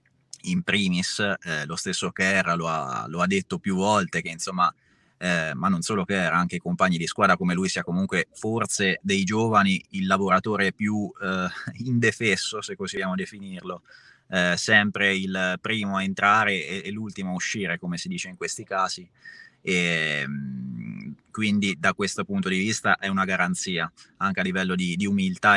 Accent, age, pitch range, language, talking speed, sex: native, 20-39, 90-110 Hz, Italian, 170 wpm, male